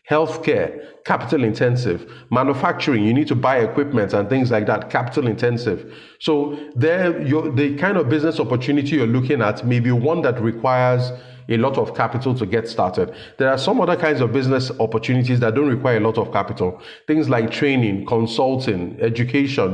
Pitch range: 115-145 Hz